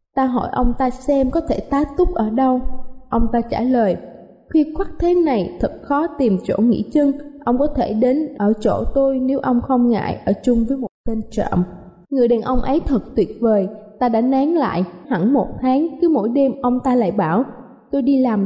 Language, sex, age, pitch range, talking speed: Vietnamese, female, 20-39, 220-270 Hz, 215 wpm